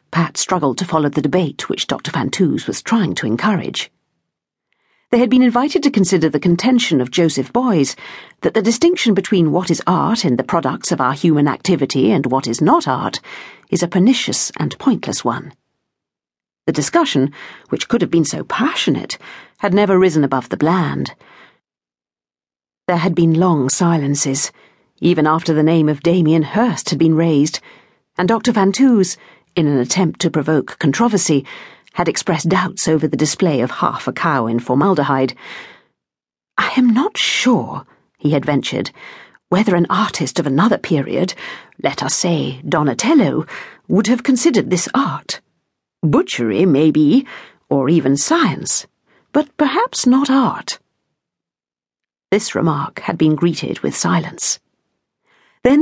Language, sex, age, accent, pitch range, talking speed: English, female, 50-69, British, 145-225 Hz, 150 wpm